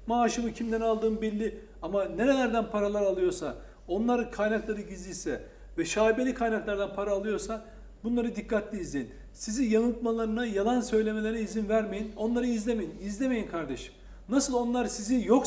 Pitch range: 215-255 Hz